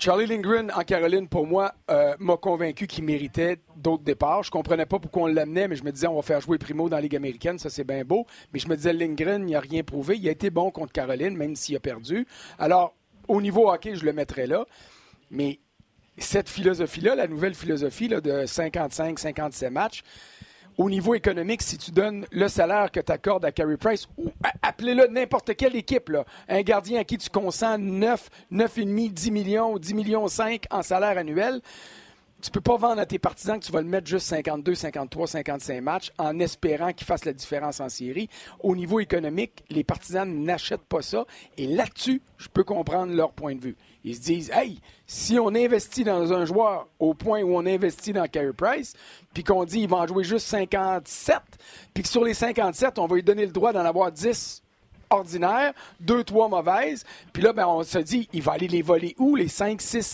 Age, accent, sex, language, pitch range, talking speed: 40-59, Canadian, male, French, 160-215 Hz, 215 wpm